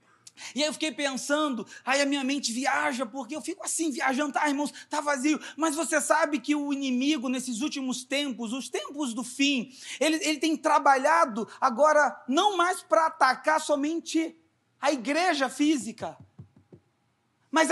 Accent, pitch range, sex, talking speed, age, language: Brazilian, 280-355 Hz, male, 155 wpm, 40-59, Portuguese